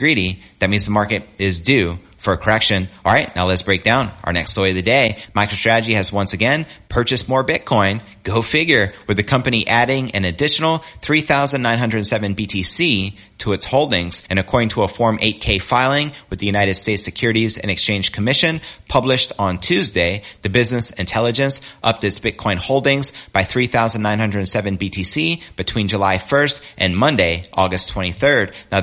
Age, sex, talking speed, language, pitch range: 30-49, male, 160 wpm, English, 100-125 Hz